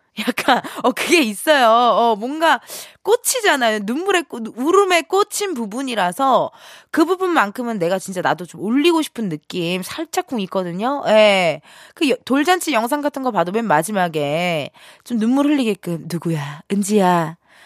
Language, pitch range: Korean, 195-315 Hz